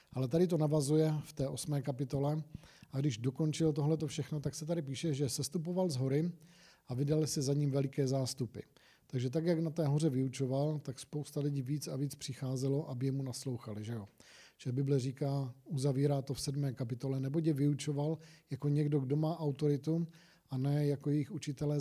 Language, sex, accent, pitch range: Czech, male, native, 135-155 Hz